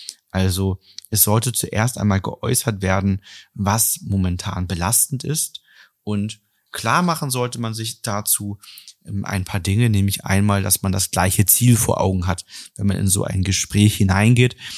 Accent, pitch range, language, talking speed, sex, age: German, 95-115 Hz, German, 155 wpm, male, 30-49